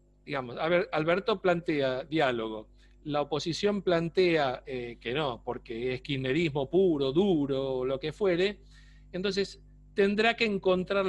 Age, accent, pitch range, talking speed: 40-59, Argentinian, 140-190 Hz, 135 wpm